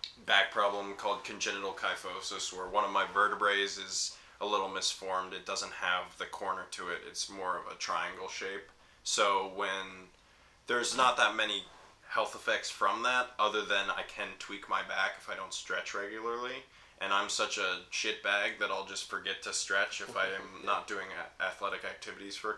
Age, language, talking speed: 20-39, English, 185 wpm